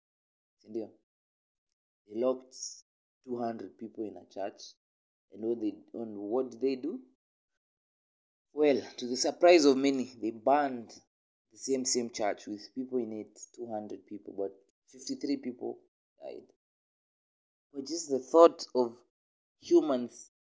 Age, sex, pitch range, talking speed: 30-49, male, 110-145 Hz, 130 wpm